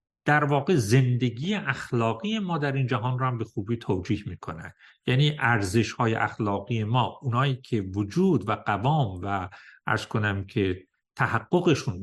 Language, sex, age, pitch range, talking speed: Persian, male, 50-69, 105-135 Hz, 140 wpm